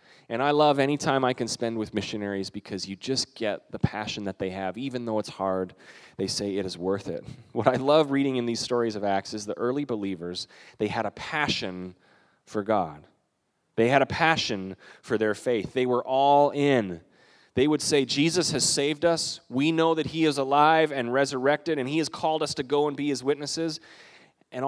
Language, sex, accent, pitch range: English, male, American, 125-180 Hz